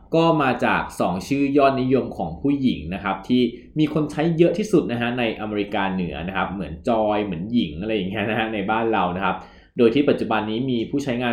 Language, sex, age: Thai, male, 20-39